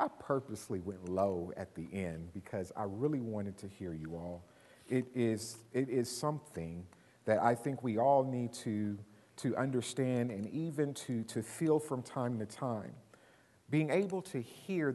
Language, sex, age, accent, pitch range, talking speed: English, male, 50-69, American, 115-165 Hz, 170 wpm